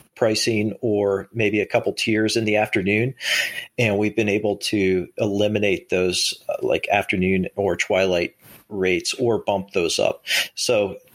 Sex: male